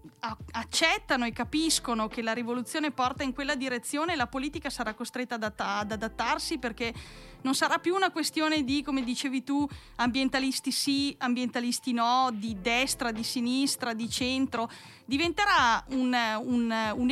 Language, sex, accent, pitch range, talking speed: Italian, female, native, 240-300 Hz, 135 wpm